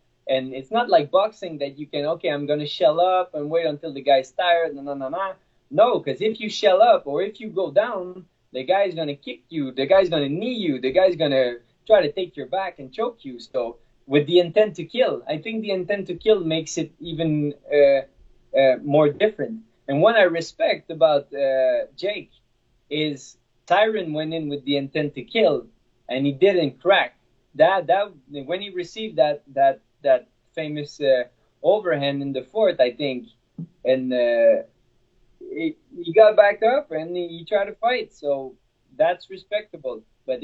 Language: English